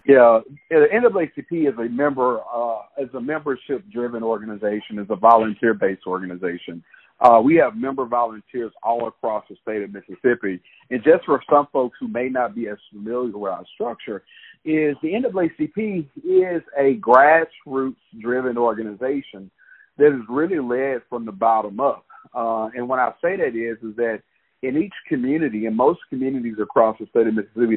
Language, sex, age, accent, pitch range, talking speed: English, male, 50-69, American, 110-135 Hz, 170 wpm